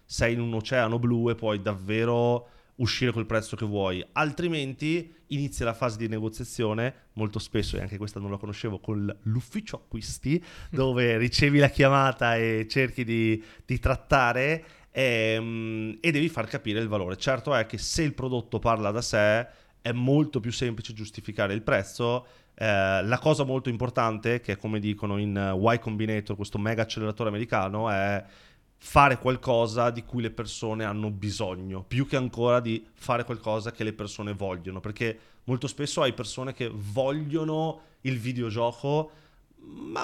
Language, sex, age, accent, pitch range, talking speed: Italian, male, 30-49, native, 110-130 Hz, 160 wpm